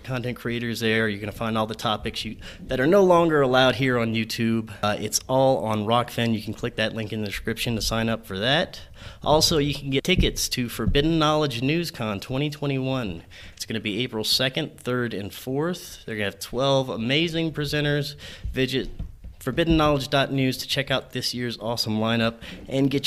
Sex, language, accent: male, English, American